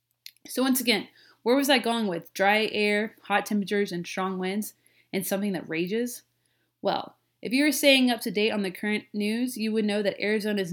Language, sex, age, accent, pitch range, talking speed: English, female, 20-39, American, 185-240 Hz, 200 wpm